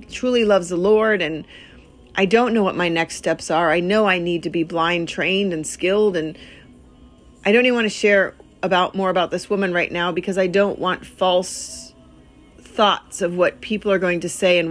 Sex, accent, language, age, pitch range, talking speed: female, American, English, 40-59, 175-200 Hz, 210 wpm